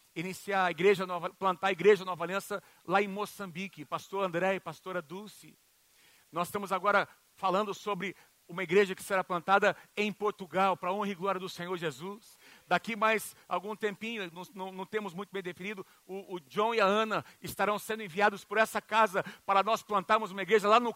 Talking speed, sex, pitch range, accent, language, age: 185 wpm, male, 175-215 Hz, Brazilian, Portuguese, 50-69